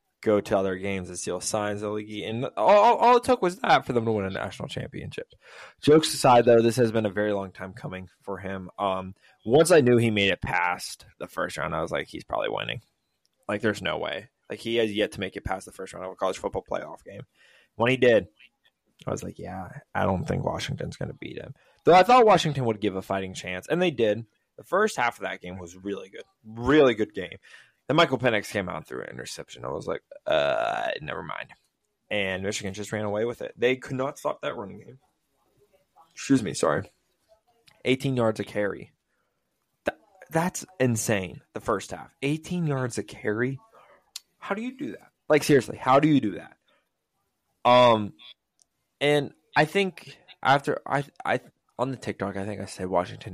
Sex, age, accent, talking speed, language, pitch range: male, 20-39, American, 210 wpm, English, 100-150 Hz